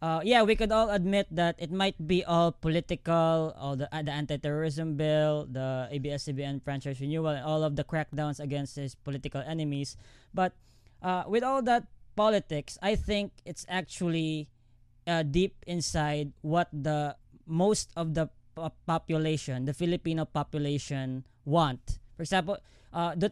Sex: female